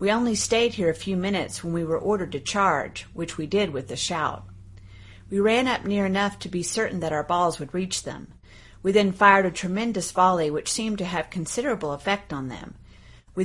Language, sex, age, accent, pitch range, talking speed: English, female, 50-69, American, 155-200 Hz, 215 wpm